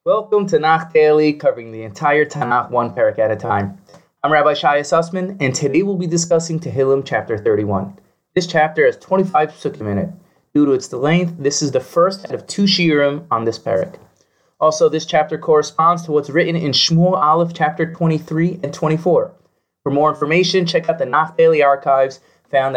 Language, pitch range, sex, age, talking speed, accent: English, 140-170 Hz, male, 20-39, 185 wpm, American